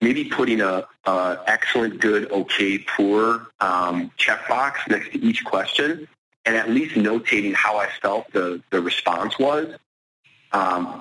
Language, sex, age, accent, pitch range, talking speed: English, male, 40-59, American, 100-130 Hz, 140 wpm